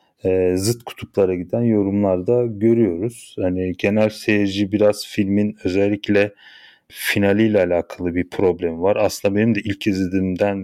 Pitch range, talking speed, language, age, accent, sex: 95-115 Hz, 120 wpm, Turkish, 40-59, native, male